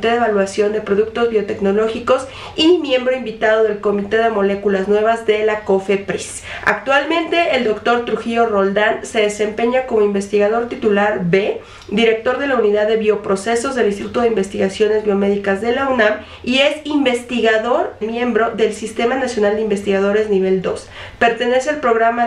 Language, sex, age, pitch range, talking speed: Spanish, female, 40-59, 210-250 Hz, 150 wpm